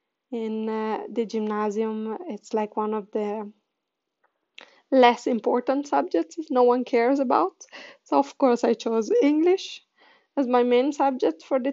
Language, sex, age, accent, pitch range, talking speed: Italian, female, 20-39, native, 225-285 Hz, 150 wpm